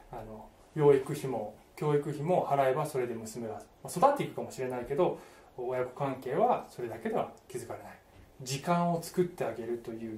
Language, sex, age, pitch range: Japanese, male, 20-39, 120-185 Hz